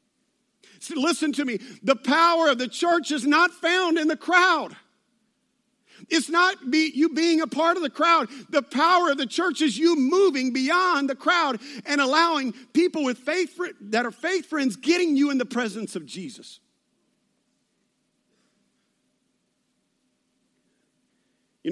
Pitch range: 195-295 Hz